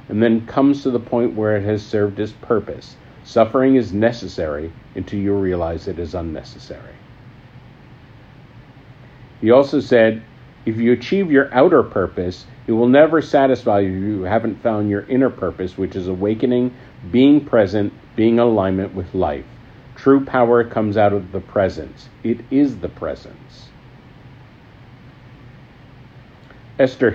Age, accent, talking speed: 50-69, American, 140 wpm